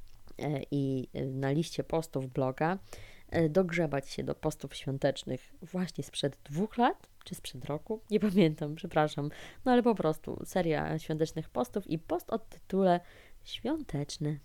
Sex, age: female, 20-39